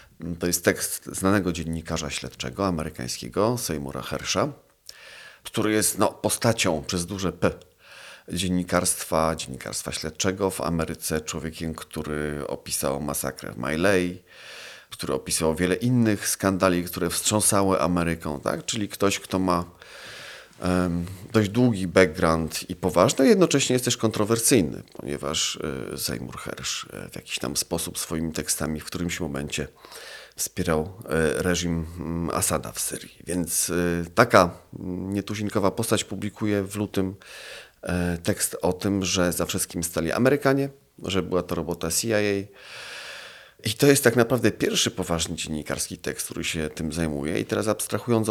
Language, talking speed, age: Polish, 125 wpm, 40-59